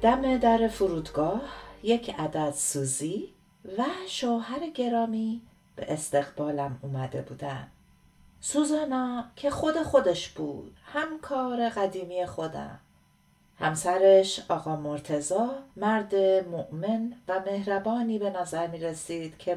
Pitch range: 170-230 Hz